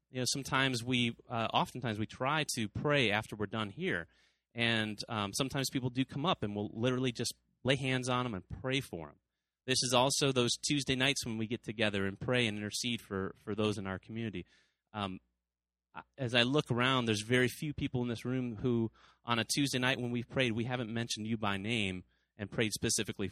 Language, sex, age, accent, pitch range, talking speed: English, male, 30-49, American, 105-135 Hz, 210 wpm